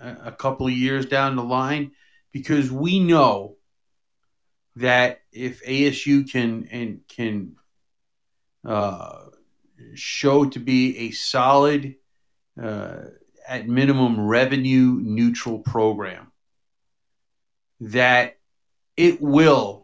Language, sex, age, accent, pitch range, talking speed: English, male, 40-59, American, 110-135 Hz, 95 wpm